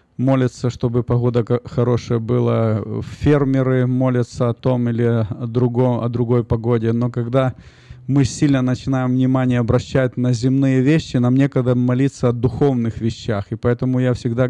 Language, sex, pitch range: Russian, male, 120-135 Hz